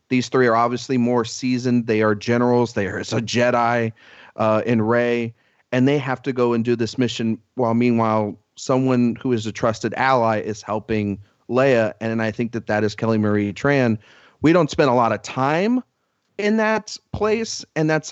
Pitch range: 110-135 Hz